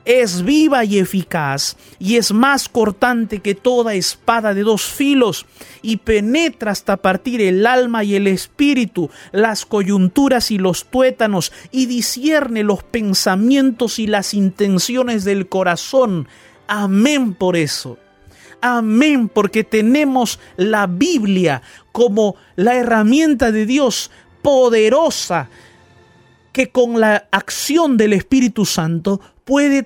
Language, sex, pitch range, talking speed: Spanish, male, 145-225 Hz, 120 wpm